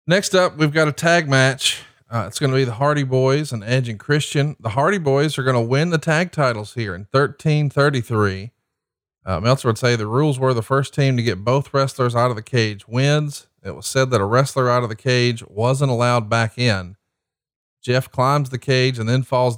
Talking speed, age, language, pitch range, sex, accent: 220 wpm, 40-59, English, 115-135 Hz, male, American